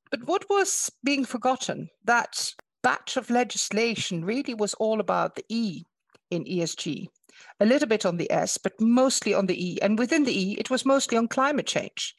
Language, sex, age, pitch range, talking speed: English, female, 60-79, 200-255 Hz, 185 wpm